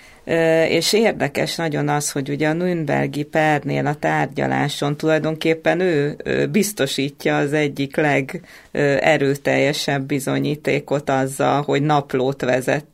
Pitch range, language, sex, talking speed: 125-155 Hz, English, female, 100 wpm